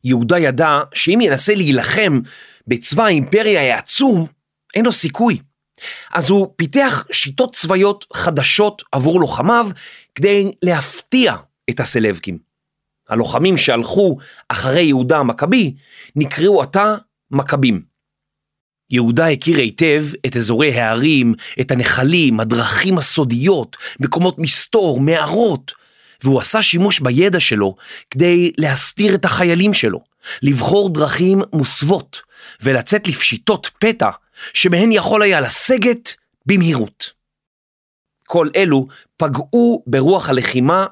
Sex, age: male, 30-49